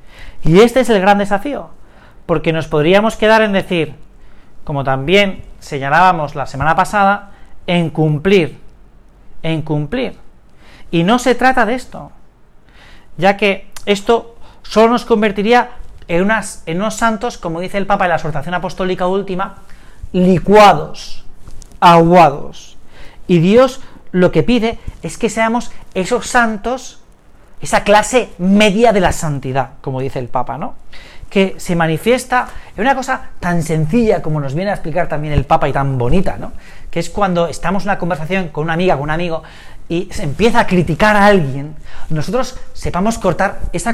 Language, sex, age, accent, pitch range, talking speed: Spanish, male, 40-59, Spanish, 160-215 Hz, 155 wpm